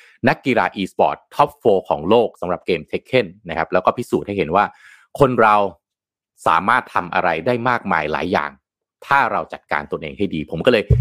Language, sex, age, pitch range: Thai, male, 30-49, 90-115 Hz